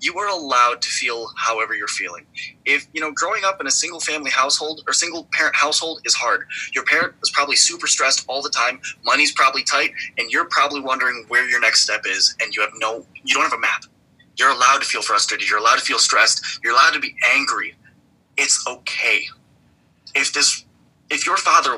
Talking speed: 210 wpm